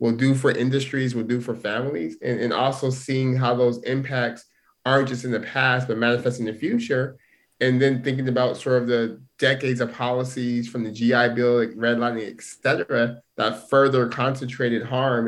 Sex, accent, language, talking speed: male, American, English, 185 wpm